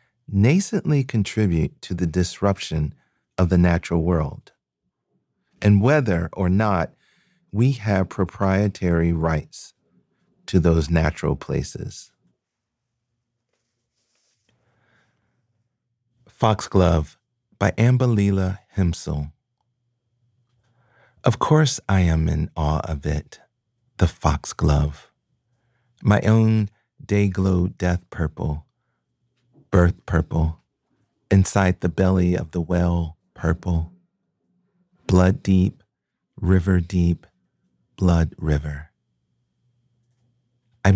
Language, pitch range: English, 85-120 Hz